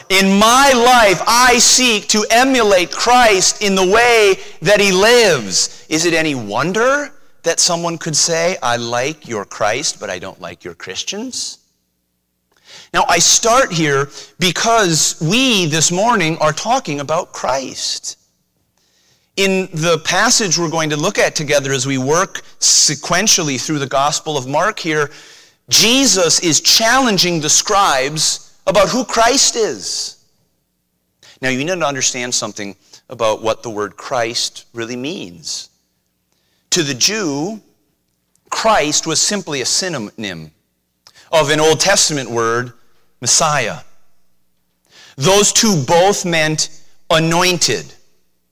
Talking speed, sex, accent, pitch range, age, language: 130 wpm, male, American, 125-195 Hz, 30-49, English